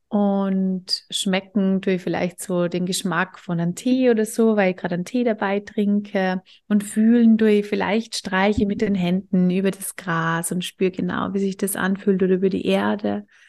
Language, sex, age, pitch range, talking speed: German, female, 30-49, 185-220 Hz, 180 wpm